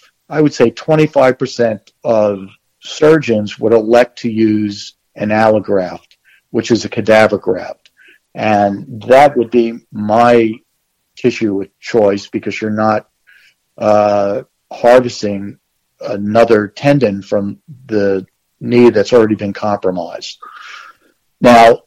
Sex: male